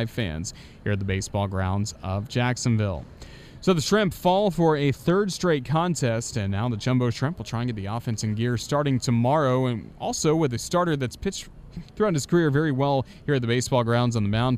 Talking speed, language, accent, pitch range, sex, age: 215 wpm, English, American, 110-145 Hz, male, 30-49